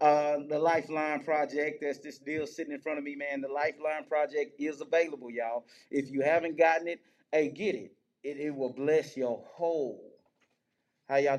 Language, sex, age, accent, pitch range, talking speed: English, male, 20-39, American, 150-175 Hz, 185 wpm